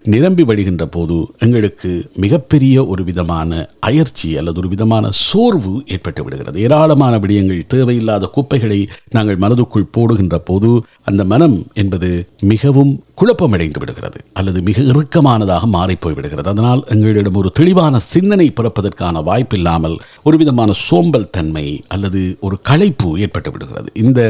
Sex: male